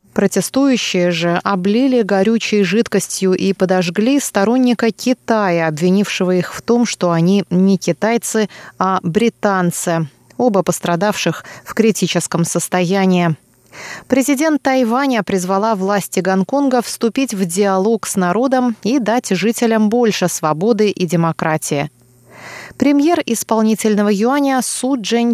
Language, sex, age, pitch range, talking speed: Russian, female, 20-39, 180-235 Hz, 110 wpm